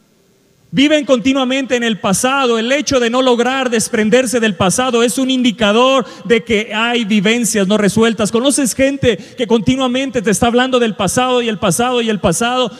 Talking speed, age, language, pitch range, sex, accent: 175 wpm, 40-59, Spanish, 225-275 Hz, male, Mexican